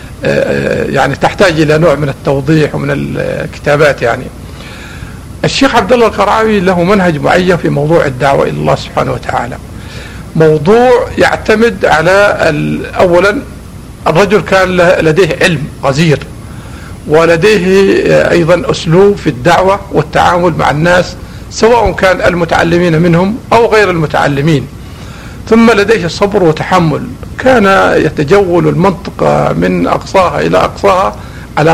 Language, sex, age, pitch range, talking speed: Arabic, male, 50-69, 145-195 Hz, 110 wpm